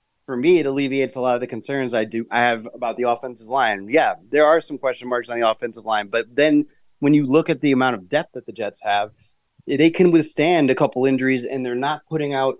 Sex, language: male, English